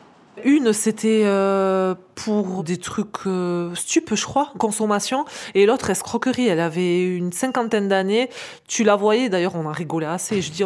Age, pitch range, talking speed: 20-39, 180-240 Hz, 165 wpm